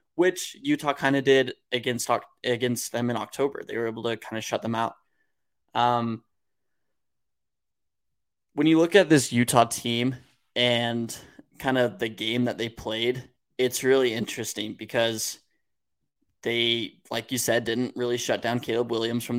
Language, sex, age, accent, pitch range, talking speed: English, male, 20-39, American, 115-130 Hz, 155 wpm